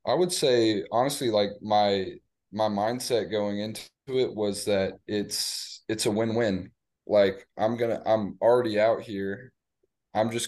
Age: 20-39